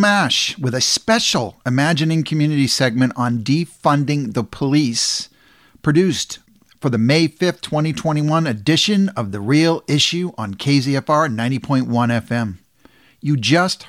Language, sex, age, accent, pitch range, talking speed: English, male, 50-69, American, 120-155 Hz, 120 wpm